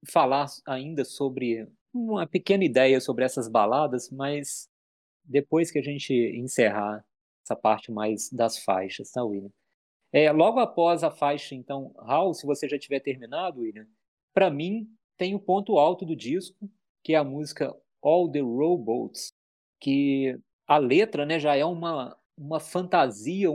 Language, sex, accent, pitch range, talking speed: Portuguese, male, Brazilian, 130-170 Hz, 150 wpm